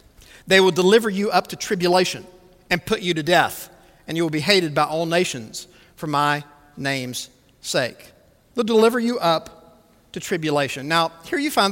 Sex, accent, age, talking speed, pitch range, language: male, American, 50-69, 175 wpm, 185-265 Hz, English